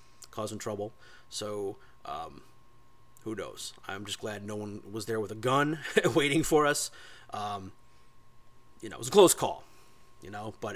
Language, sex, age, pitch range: English, male, 30-49, 110-140 Hz